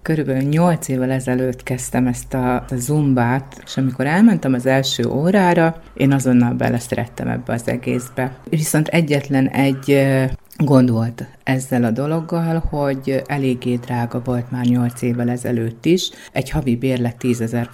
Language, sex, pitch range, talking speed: Hungarian, female, 125-165 Hz, 140 wpm